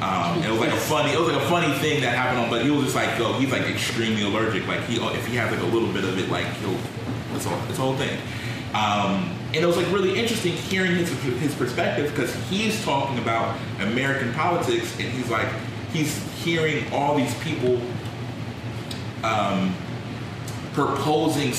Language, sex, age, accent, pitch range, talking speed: English, male, 30-49, American, 115-140 Hz, 195 wpm